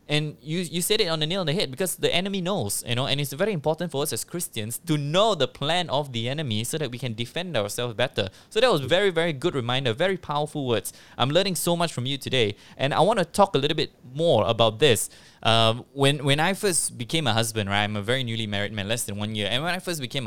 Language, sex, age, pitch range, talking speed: English, male, 20-39, 110-155 Hz, 270 wpm